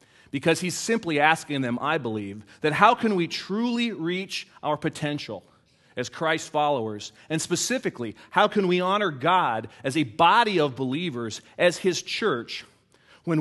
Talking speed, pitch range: 150 wpm, 120-160 Hz